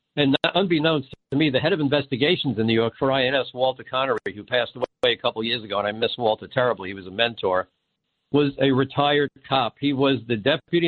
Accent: American